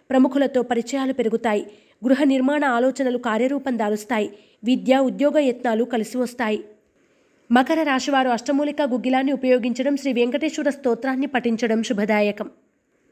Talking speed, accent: 105 wpm, native